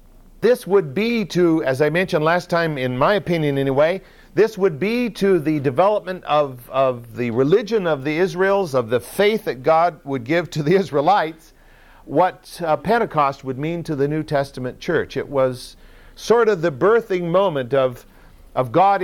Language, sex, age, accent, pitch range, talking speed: English, male, 50-69, American, 130-180 Hz, 175 wpm